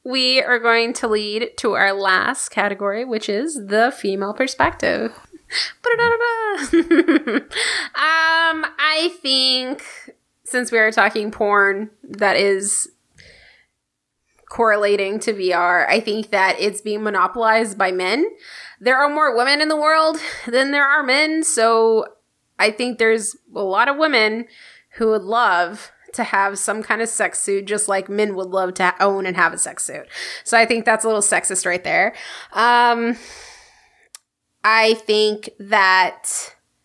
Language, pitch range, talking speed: English, 195-250 Hz, 145 wpm